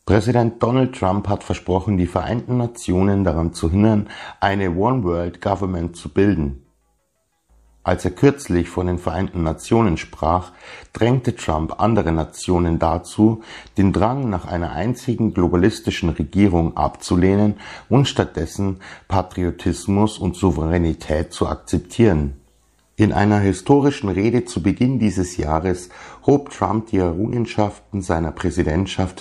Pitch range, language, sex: 85-110 Hz, German, male